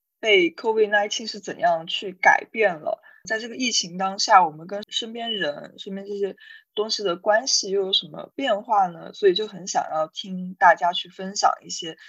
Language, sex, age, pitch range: Chinese, female, 20-39, 180-285 Hz